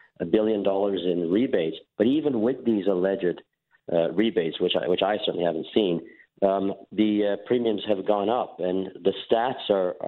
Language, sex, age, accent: English, male, 50-69, American